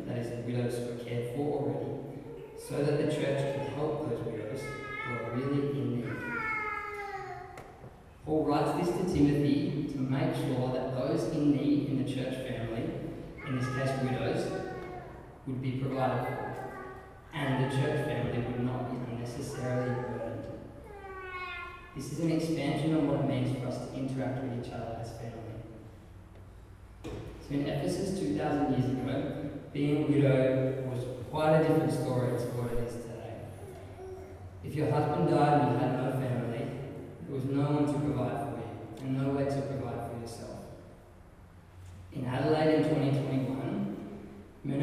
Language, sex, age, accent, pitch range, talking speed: English, male, 20-39, Australian, 125-145 Hz, 160 wpm